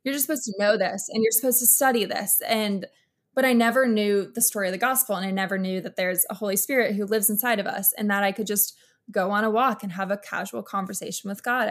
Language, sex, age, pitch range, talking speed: English, female, 20-39, 190-225 Hz, 265 wpm